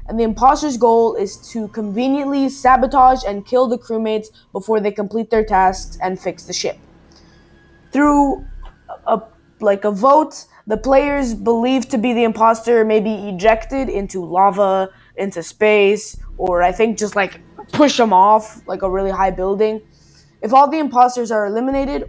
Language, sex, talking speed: English, female, 165 wpm